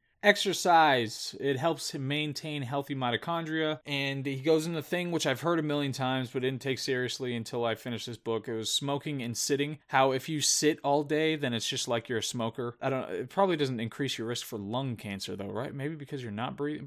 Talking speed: 230 wpm